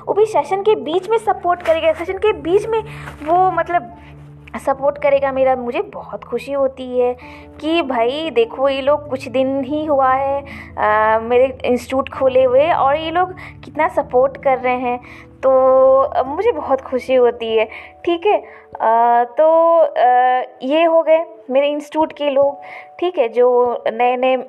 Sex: female